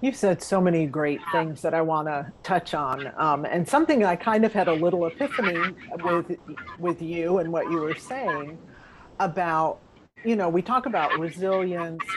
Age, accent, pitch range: 50-69, American, 160-200 Hz